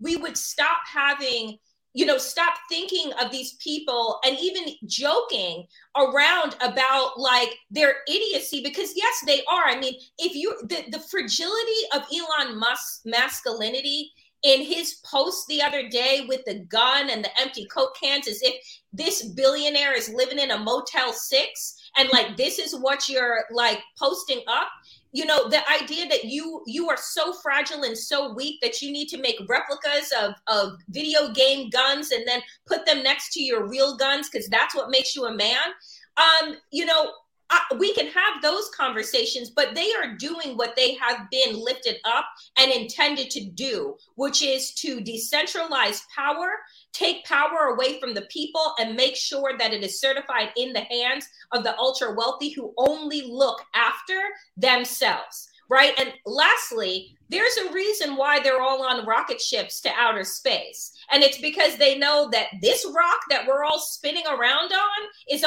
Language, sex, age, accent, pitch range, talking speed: English, female, 30-49, American, 255-320 Hz, 175 wpm